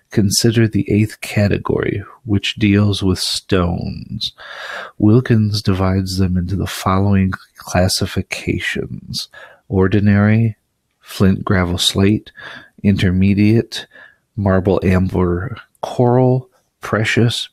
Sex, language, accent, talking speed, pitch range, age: male, English, American, 80 wpm, 95-115 Hz, 40-59